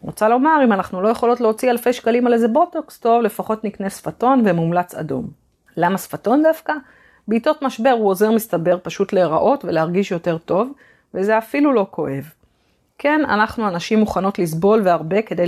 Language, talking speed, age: Hebrew, 165 wpm, 30-49